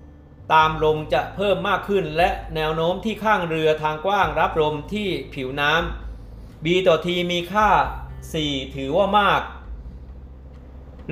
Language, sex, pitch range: Thai, male, 145-185 Hz